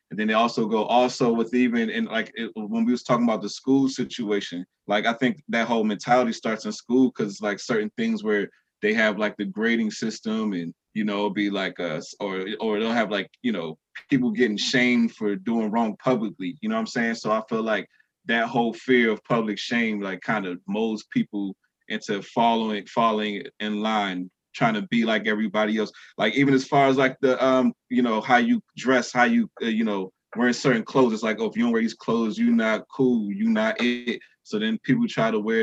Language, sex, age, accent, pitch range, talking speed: English, male, 20-39, American, 105-130 Hz, 225 wpm